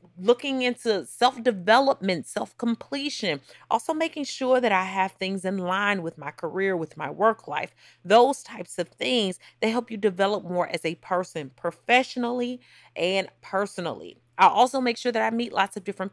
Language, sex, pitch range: English, female, 180-245 Hz